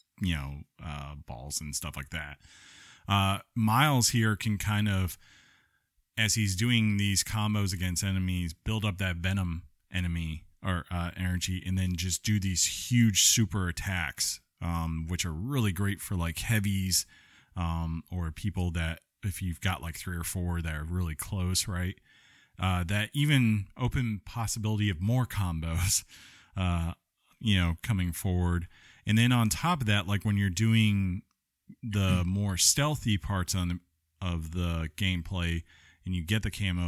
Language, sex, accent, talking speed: English, male, American, 160 wpm